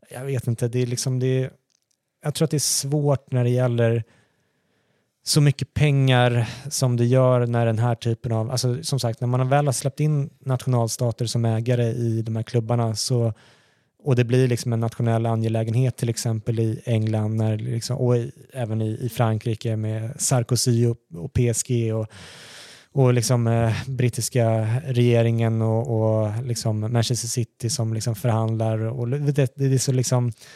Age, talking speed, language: 20-39, 175 wpm, Swedish